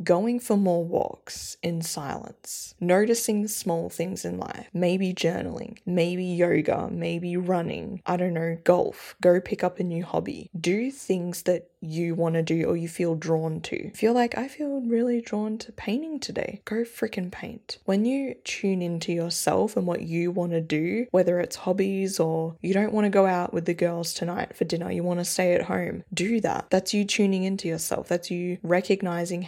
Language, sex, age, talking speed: English, female, 10-29, 190 wpm